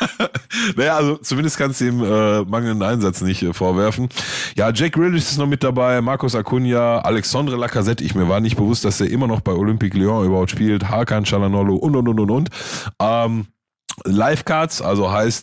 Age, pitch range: 30-49, 90-110 Hz